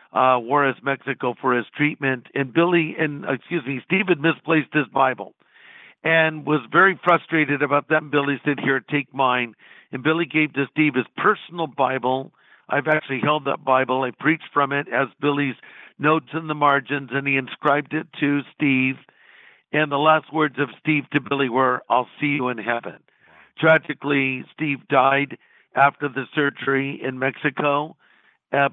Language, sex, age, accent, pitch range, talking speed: English, male, 50-69, American, 135-160 Hz, 165 wpm